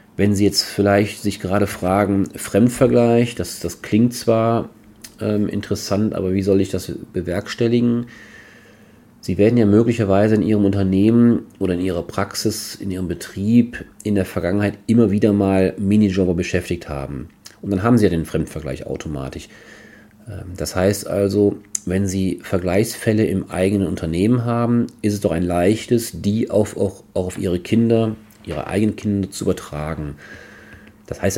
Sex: male